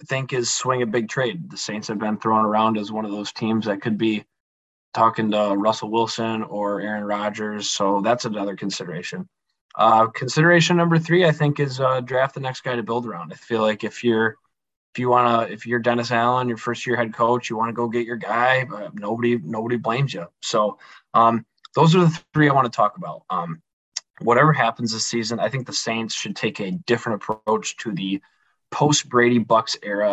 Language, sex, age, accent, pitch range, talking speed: English, male, 20-39, American, 105-125 Hz, 215 wpm